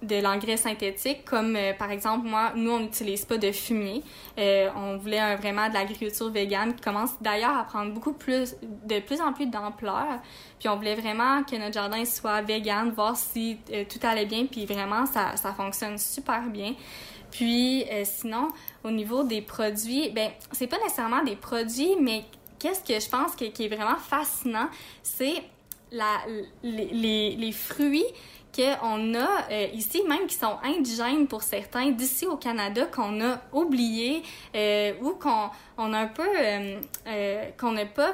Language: French